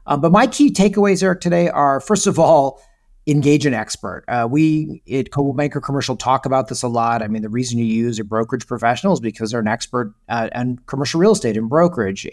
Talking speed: 225 wpm